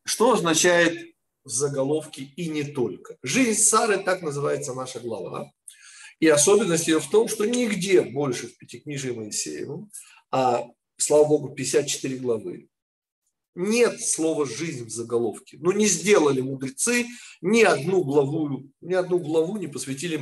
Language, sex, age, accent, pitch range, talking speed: Russian, male, 40-59, native, 135-195 Hz, 140 wpm